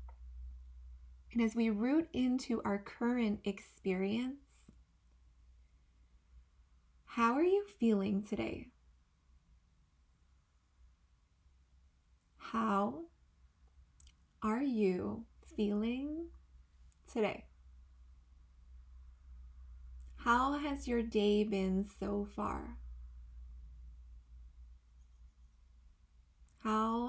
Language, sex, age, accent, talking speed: English, female, 20-39, American, 60 wpm